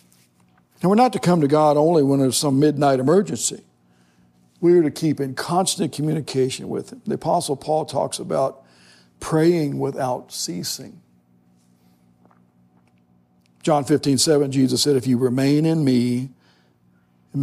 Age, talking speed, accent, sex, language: 60-79, 140 wpm, American, male, English